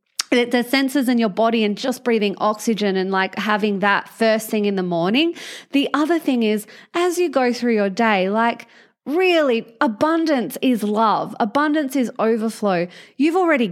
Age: 30-49